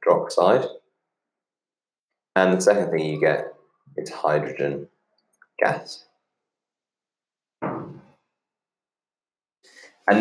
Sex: male